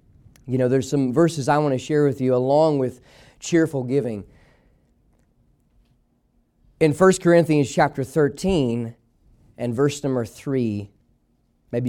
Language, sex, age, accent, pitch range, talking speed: English, male, 30-49, American, 125-195 Hz, 125 wpm